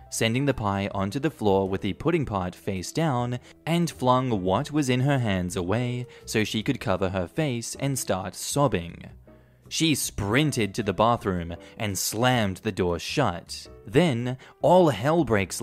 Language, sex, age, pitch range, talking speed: English, male, 20-39, 95-130 Hz, 165 wpm